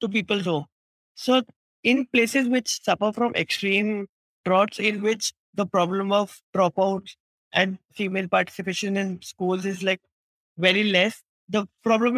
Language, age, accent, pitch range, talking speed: English, 20-39, Indian, 185-225 Hz, 140 wpm